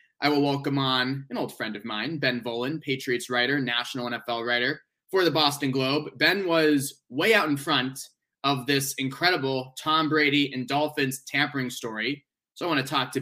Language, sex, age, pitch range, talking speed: English, male, 20-39, 125-150 Hz, 185 wpm